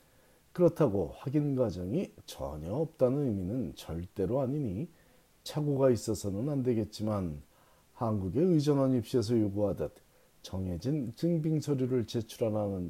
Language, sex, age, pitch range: Korean, male, 40-59, 100-135 Hz